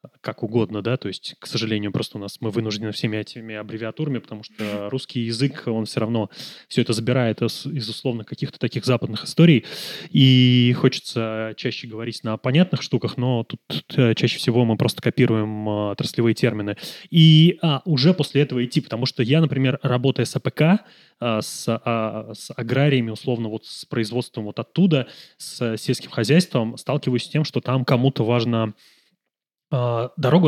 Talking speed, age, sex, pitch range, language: 160 wpm, 20-39, male, 115-135 Hz, Russian